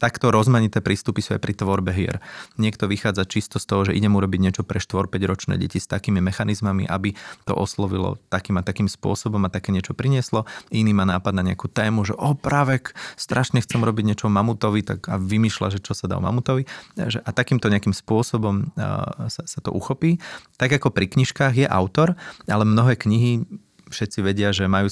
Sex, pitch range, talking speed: male, 95-110 Hz, 190 wpm